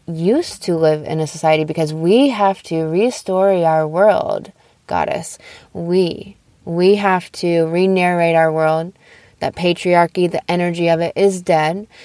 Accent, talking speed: American, 145 wpm